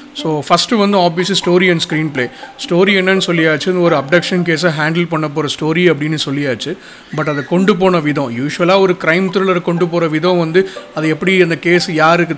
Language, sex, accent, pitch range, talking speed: Tamil, male, native, 150-185 Hz, 185 wpm